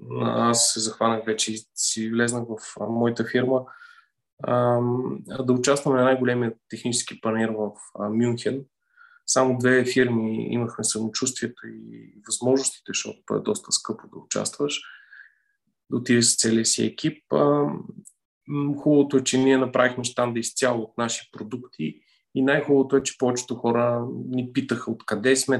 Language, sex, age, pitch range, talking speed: Bulgarian, male, 20-39, 115-135 Hz, 140 wpm